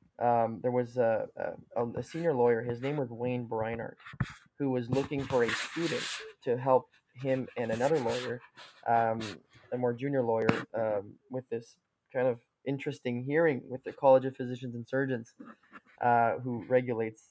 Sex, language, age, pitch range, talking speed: male, English, 20-39, 115-130 Hz, 165 wpm